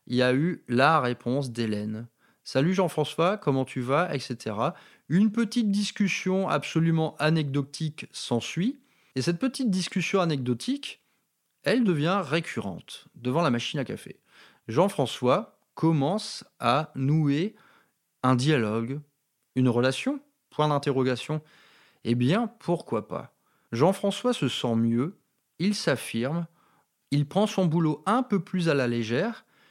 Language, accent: French, French